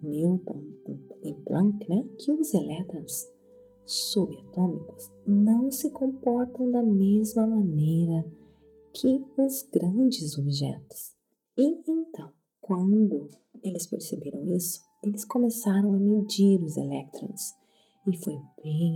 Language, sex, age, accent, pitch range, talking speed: Portuguese, female, 40-59, Brazilian, 160-225 Hz, 105 wpm